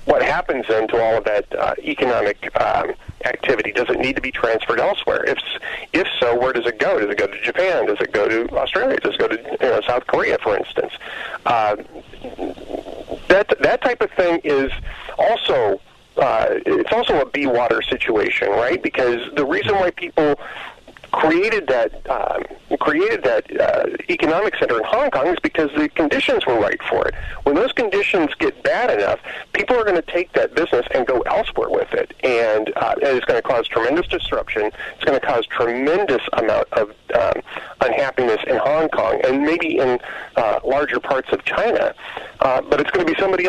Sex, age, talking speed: male, 40-59, 190 wpm